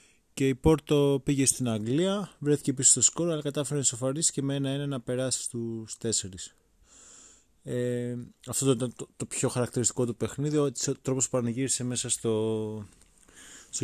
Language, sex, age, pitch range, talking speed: Greek, male, 20-39, 110-135 Hz, 165 wpm